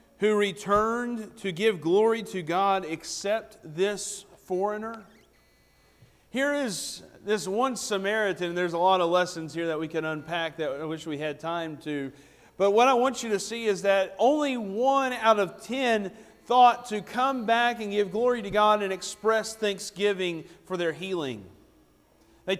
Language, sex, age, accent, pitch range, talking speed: English, male, 40-59, American, 160-210 Hz, 165 wpm